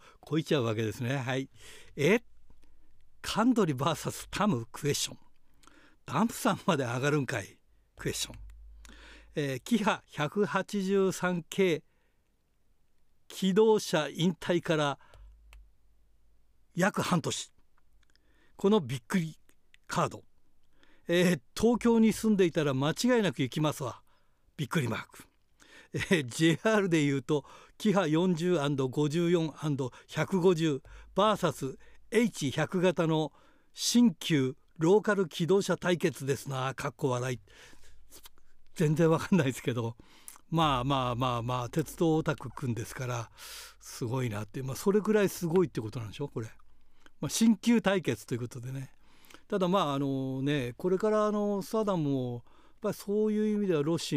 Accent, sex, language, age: native, male, Japanese, 60-79